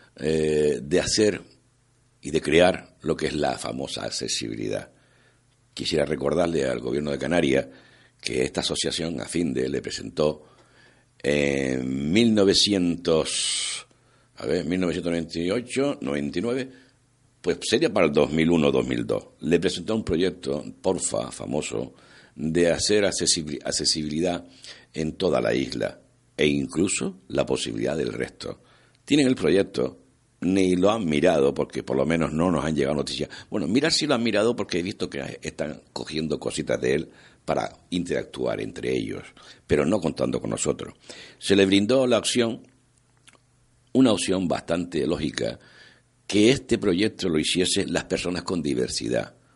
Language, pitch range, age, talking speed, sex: Spanish, 80-115 Hz, 60-79, 140 wpm, male